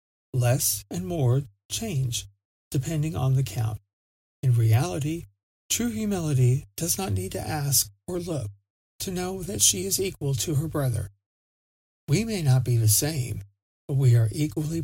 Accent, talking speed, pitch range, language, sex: American, 155 wpm, 100-155 Hz, English, male